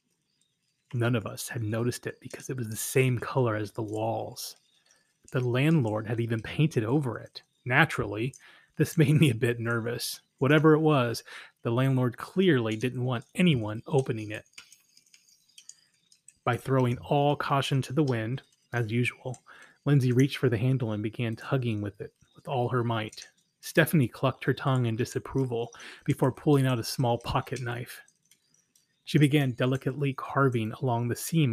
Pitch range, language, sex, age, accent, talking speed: 120-145 Hz, English, male, 30-49, American, 160 wpm